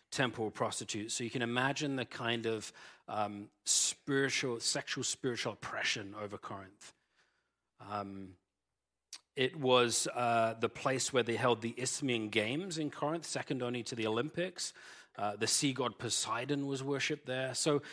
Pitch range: 115-160 Hz